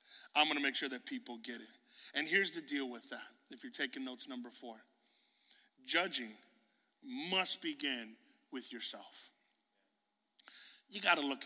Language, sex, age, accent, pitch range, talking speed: English, male, 30-49, American, 140-180 Hz, 155 wpm